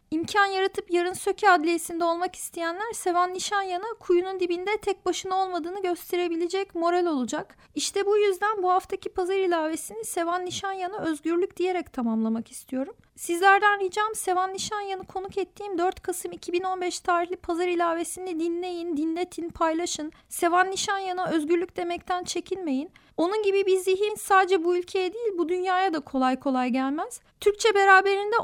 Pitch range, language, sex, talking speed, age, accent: 350-395 Hz, Turkish, female, 150 wpm, 40-59, native